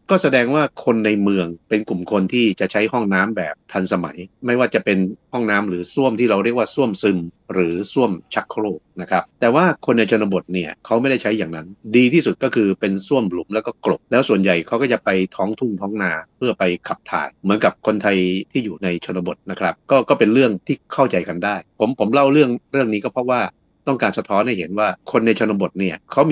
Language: Thai